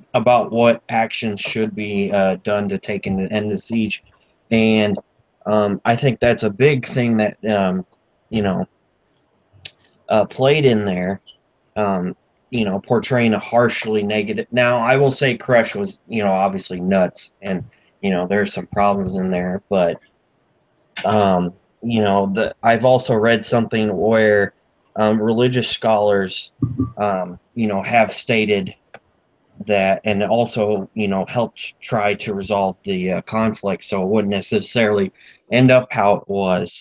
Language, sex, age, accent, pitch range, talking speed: English, male, 20-39, American, 100-120 Hz, 150 wpm